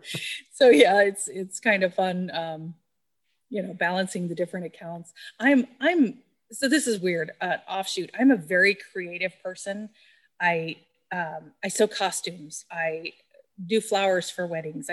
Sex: female